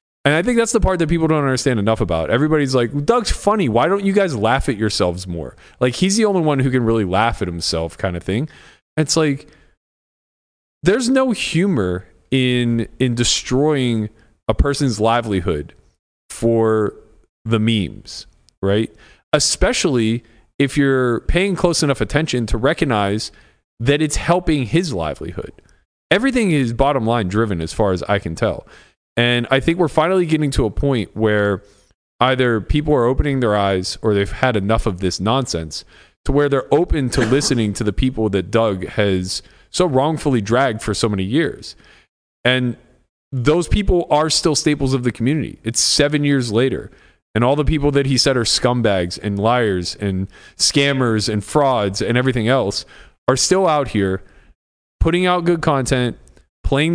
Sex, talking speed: male, 170 wpm